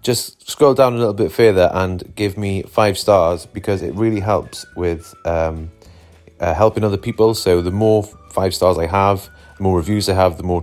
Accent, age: British, 30-49